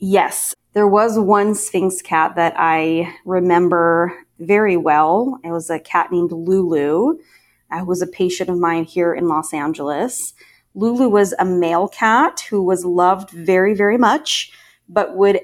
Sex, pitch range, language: female, 175-215 Hz, English